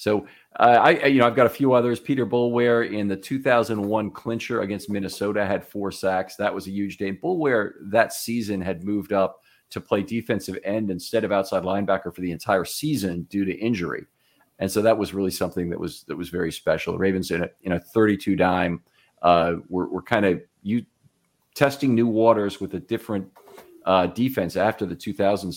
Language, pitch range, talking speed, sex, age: English, 90-115 Hz, 195 wpm, male, 40-59